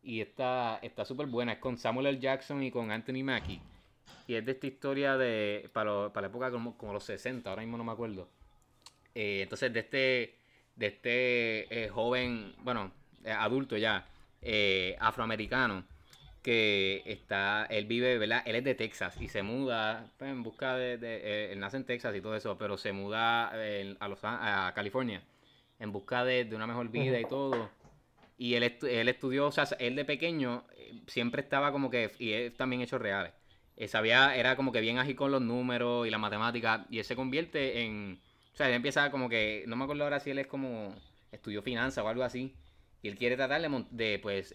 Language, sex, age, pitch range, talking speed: Spanish, male, 20-39, 110-130 Hz, 205 wpm